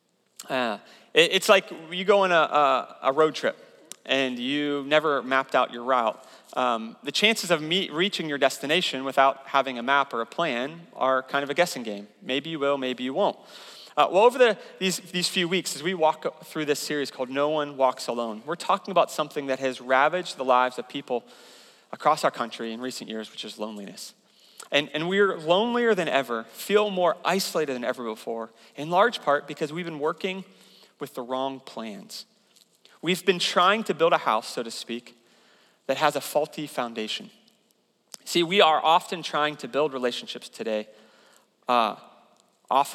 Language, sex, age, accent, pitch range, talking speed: English, male, 30-49, American, 130-175 Hz, 185 wpm